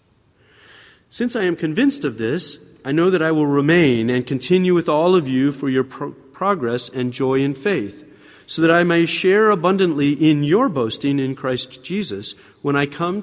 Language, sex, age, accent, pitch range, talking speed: English, male, 40-59, American, 130-175 Hz, 180 wpm